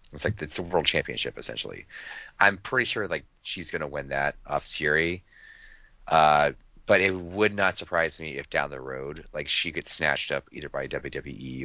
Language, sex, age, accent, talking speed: English, male, 30-49, American, 190 wpm